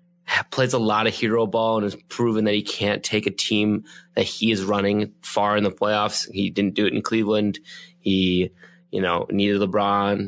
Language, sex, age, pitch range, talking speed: English, male, 20-39, 100-115 Hz, 200 wpm